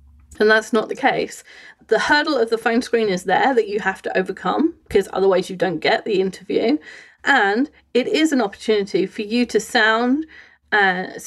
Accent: British